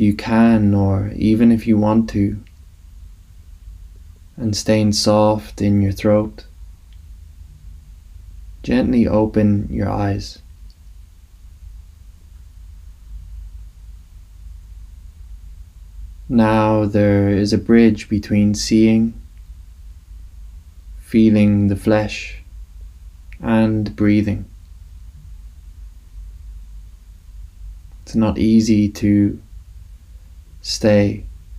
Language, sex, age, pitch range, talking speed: English, male, 20-39, 80-105 Hz, 65 wpm